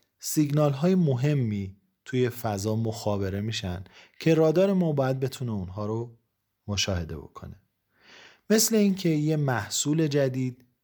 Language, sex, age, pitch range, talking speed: Persian, male, 30-49, 110-155 Hz, 115 wpm